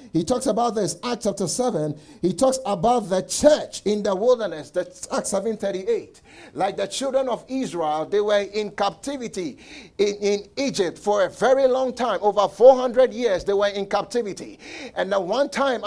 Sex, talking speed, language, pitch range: male, 175 wpm, English, 210-275 Hz